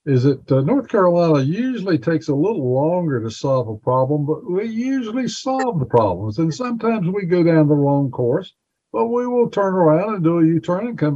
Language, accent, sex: English, American, male